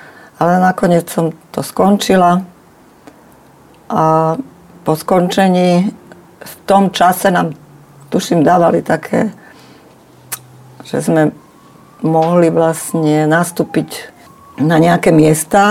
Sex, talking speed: female, 90 wpm